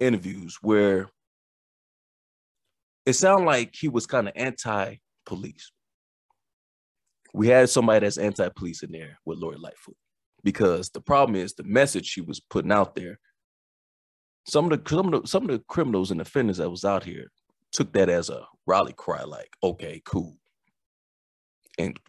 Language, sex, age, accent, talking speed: English, male, 30-49, American, 155 wpm